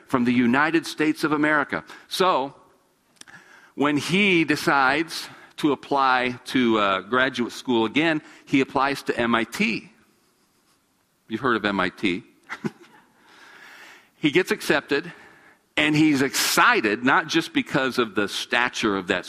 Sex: male